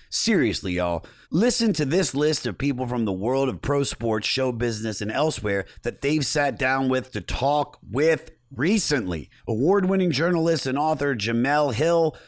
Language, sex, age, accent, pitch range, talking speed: English, male, 30-49, American, 105-150 Hz, 160 wpm